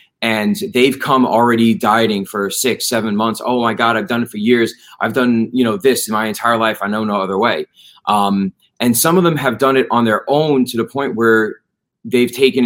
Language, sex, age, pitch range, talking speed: English, male, 30-49, 105-135 Hz, 230 wpm